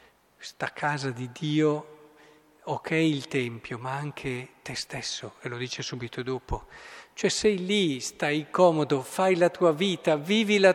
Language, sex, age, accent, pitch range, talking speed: Italian, male, 50-69, native, 145-205 Hz, 150 wpm